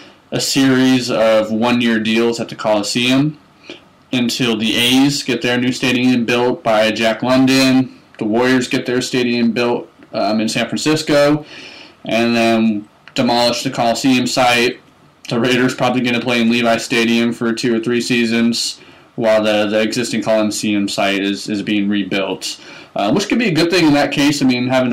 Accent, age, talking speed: American, 20-39, 175 wpm